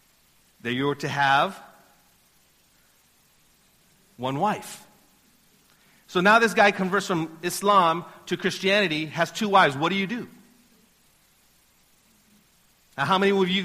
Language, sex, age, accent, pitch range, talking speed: English, male, 50-69, American, 145-205 Hz, 125 wpm